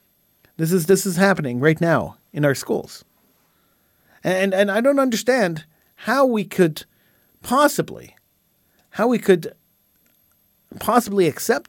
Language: English